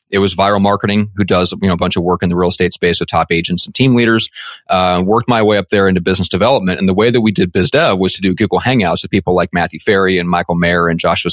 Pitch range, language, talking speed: 90-105 Hz, English, 290 wpm